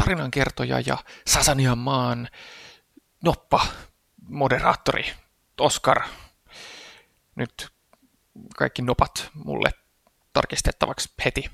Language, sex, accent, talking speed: Finnish, male, native, 70 wpm